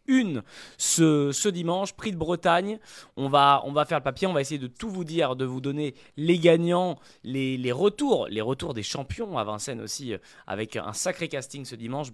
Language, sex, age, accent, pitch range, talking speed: French, male, 20-39, French, 115-160 Hz, 210 wpm